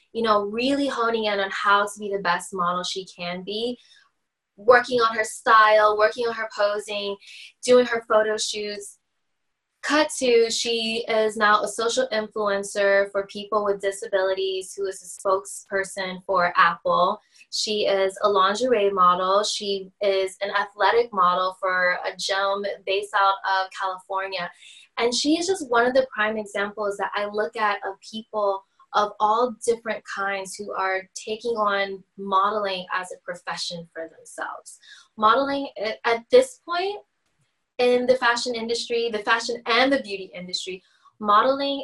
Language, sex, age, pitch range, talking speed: English, female, 20-39, 190-230 Hz, 150 wpm